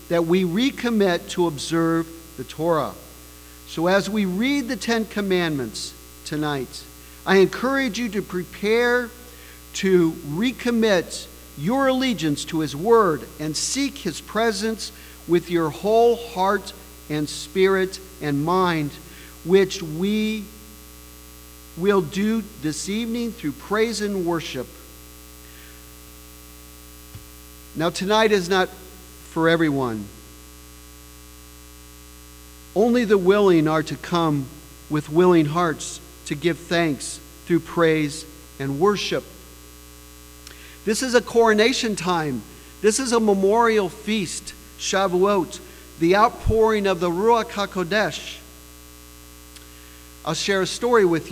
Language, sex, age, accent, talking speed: English, male, 50-69, American, 110 wpm